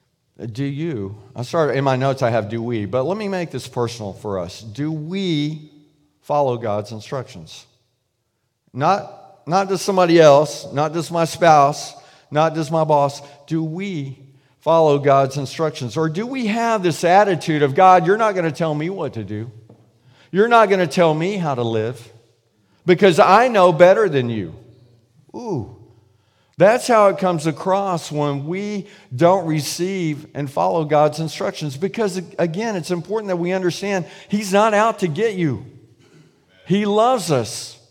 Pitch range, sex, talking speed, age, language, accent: 130-185 Hz, male, 160 wpm, 50-69, English, American